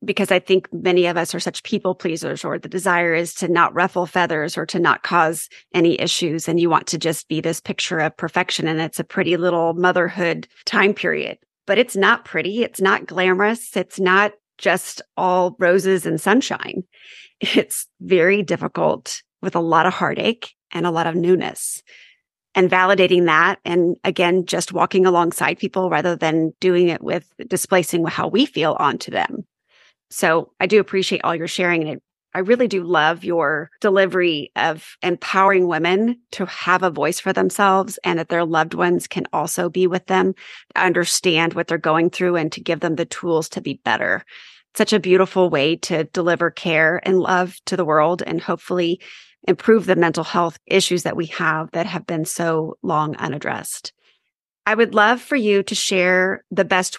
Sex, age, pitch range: female, 30-49, 170-190 Hz